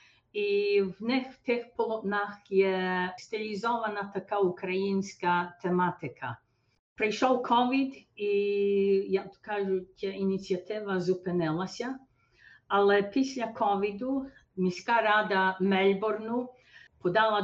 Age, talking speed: 50-69, 90 wpm